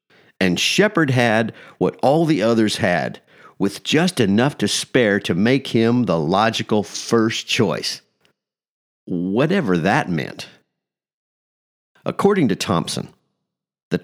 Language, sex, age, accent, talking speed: English, male, 50-69, American, 115 wpm